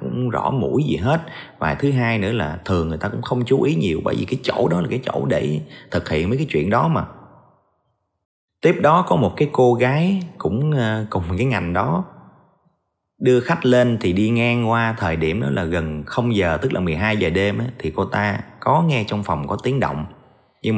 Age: 20-39